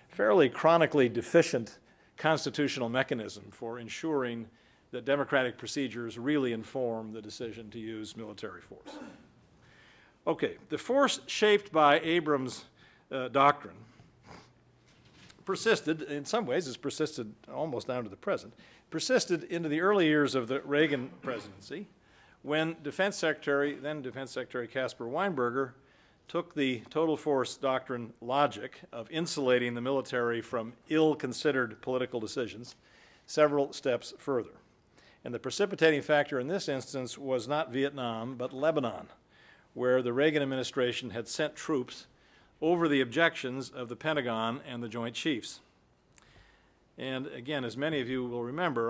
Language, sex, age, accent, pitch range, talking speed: English, male, 50-69, American, 120-150 Hz, 135 wpm